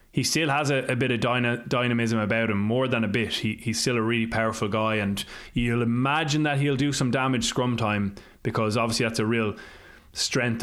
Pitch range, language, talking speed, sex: 105-120 Hz, English, 215 wpm, male